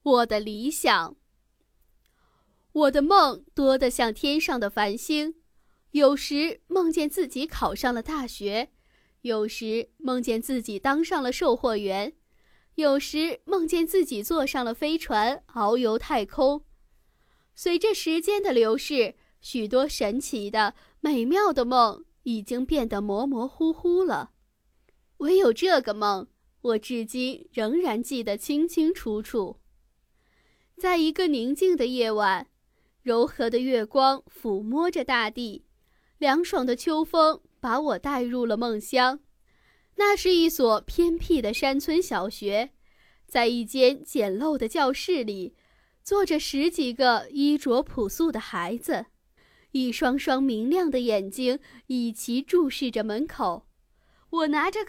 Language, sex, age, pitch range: Chinese, female, 20-39, 230-320 Hz